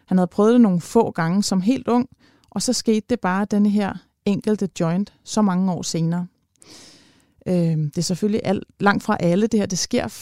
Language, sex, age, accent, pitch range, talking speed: Danish, female, 30-49, native, 180-220 Hz, 195 wpm